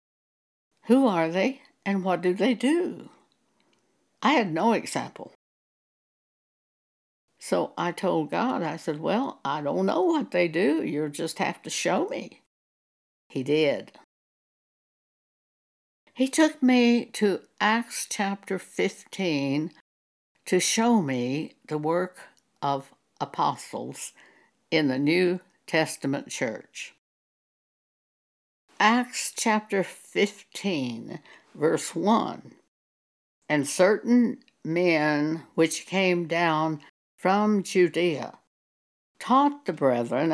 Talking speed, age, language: 100 wpm, 60-79, English